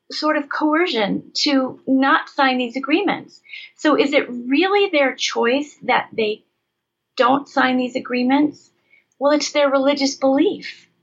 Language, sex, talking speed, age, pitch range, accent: English, female, 135 wpm, 40-59, 260-315 Hz, American